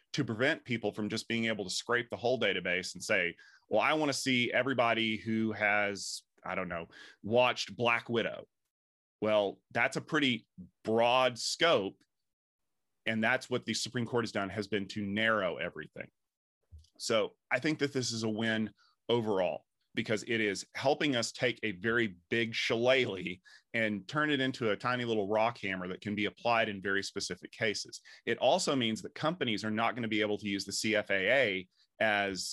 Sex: male